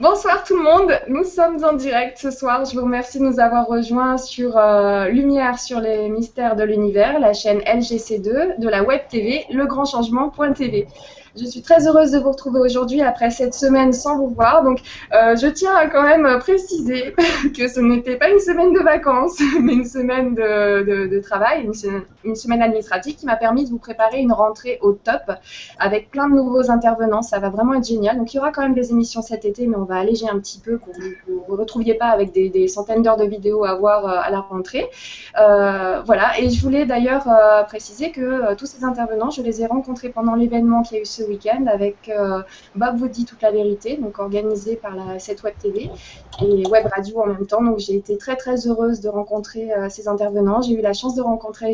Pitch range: 210-260 Hz